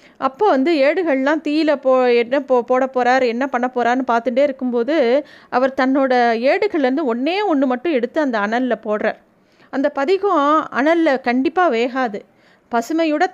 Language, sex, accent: Tamil, female, native